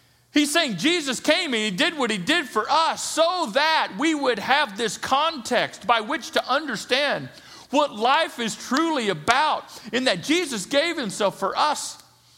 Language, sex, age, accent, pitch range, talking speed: English, male, 50-69, American, 165-275 Hz, 170 wpm